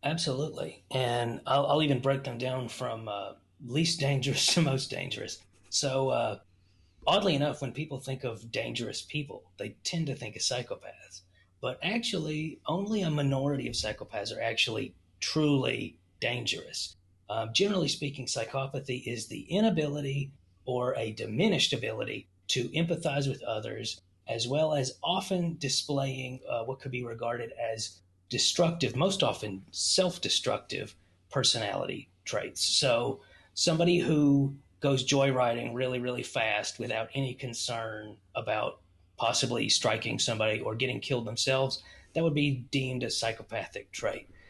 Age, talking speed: 30-49, 135 wpm